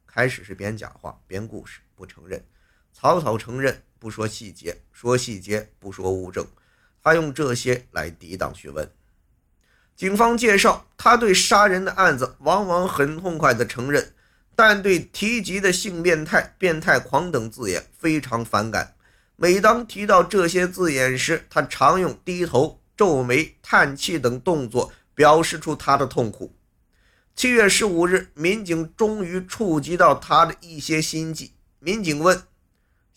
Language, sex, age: Chinese, male, 50-69